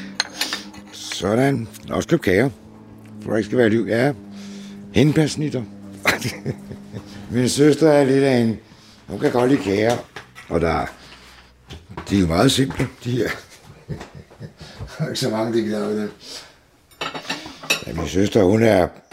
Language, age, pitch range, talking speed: Danish, 60-79, 85-115 Hz, 140 wpm